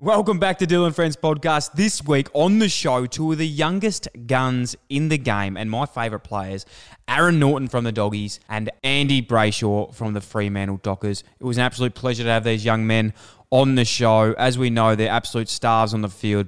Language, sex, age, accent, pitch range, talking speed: English, male, 20-39, Australian, 110-145 Hz, 210 wpm